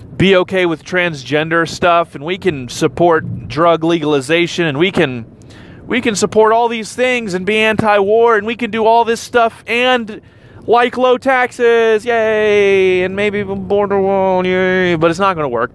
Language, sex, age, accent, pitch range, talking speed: English, male, 30-49, American, 125-195 Hz, 175 wpm